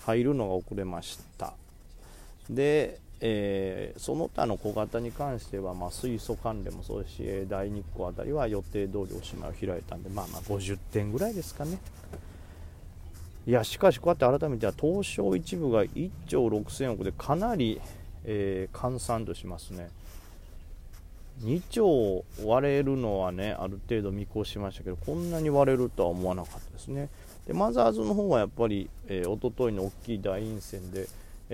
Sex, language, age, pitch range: male, Japanese, 40-59, 90-115 Hz